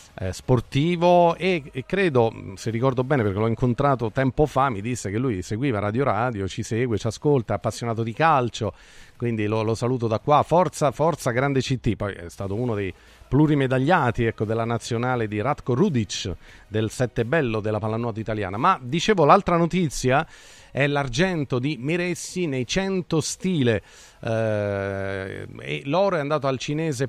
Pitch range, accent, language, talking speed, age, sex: 110-150 Hz, native, Italian, 160 wpm, 40-59, male